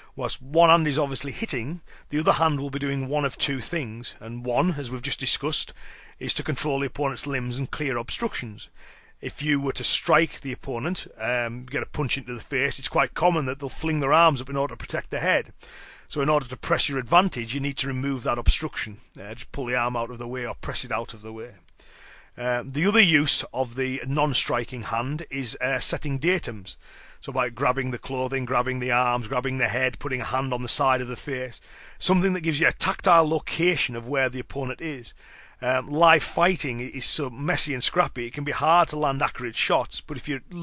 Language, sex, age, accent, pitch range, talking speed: English, male, 30-49, British, 125-155 Hz, 225 wpm